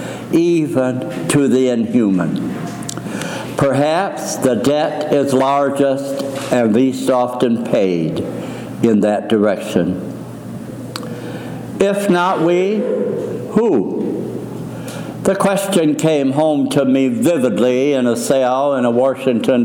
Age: 60-79